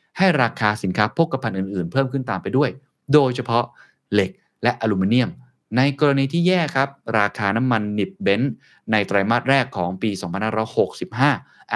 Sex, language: male, Thai